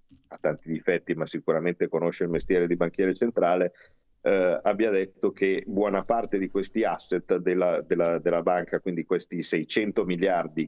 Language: Italian